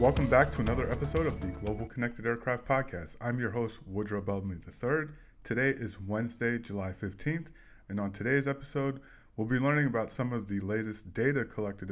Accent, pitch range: American, 100-125 Hz